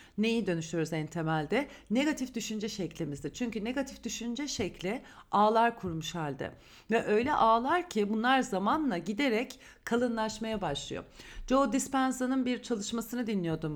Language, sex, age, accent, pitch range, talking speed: Turkish, female, 40-59, native, 195-255 Hz, 120 wpm